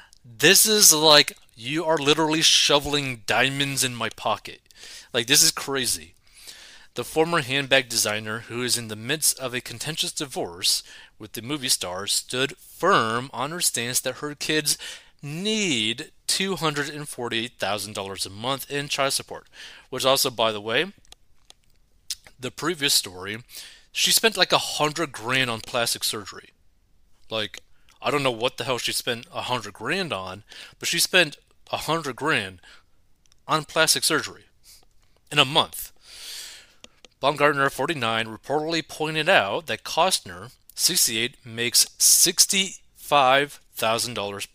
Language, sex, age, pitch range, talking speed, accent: English, male, 30-49, 110-155 Hz, 135 wpm, American